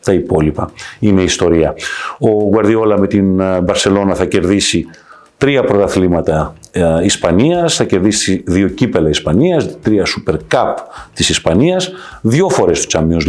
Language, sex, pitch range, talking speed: Greek, male, 90-150 Hz, 125 wpm